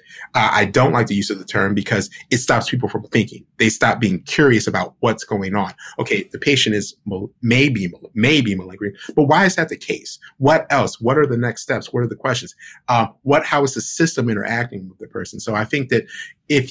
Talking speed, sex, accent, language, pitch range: 230 wpm, male, American, English, 105-130 Hz